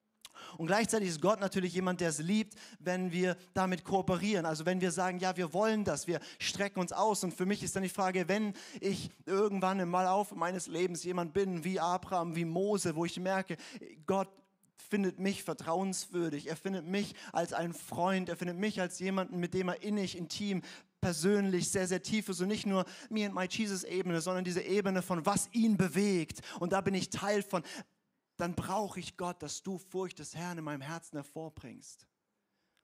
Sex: male